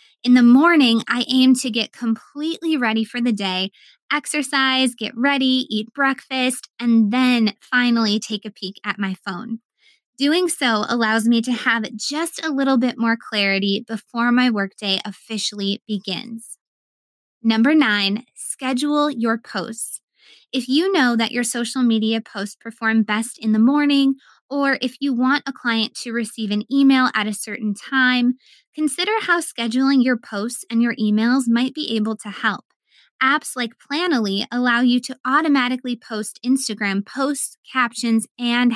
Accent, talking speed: American, 155 wpm